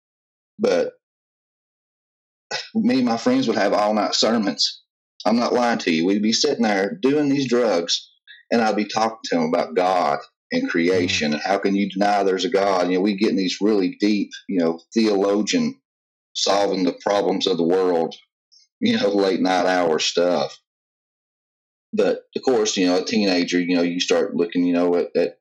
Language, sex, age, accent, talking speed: English, male, 30-49, American, 180 wpm